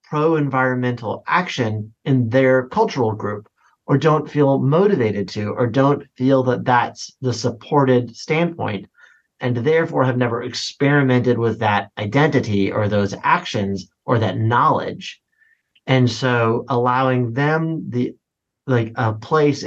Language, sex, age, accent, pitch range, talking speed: English, male, 30-49, American, 110-135 Hz, 125 wpm